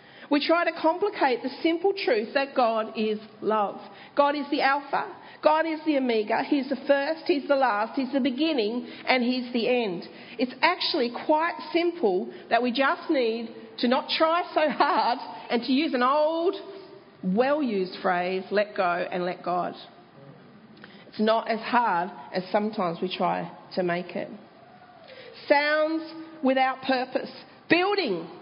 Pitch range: 235-310 Hz